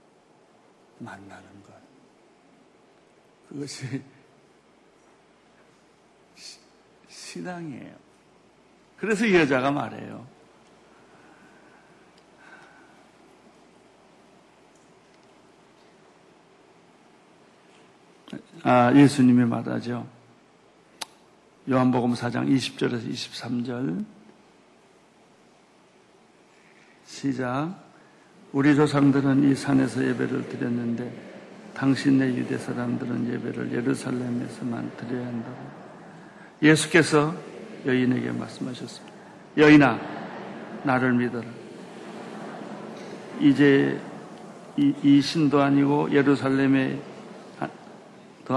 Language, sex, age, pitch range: Korean, male, 60-79, 125-150 Hz